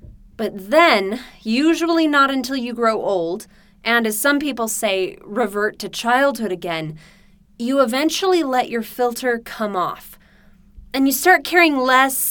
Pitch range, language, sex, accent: 200-270 Hz, English, female, American